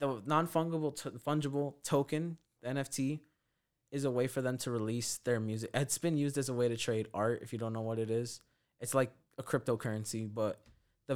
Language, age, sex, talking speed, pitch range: English, 20-39, male, 205 wpm, 115-145 Hz